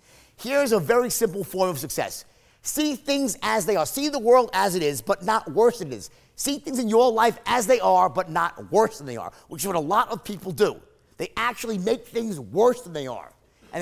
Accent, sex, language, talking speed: American, male, English, 240 wpm